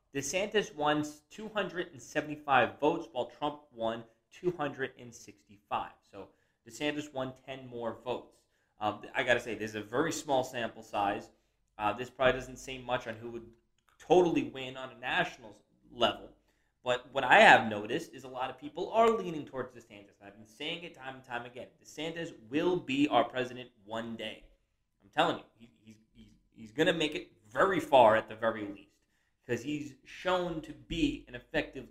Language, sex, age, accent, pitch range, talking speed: English, male, 20-39, American, 115-150 Hz, 180 wpm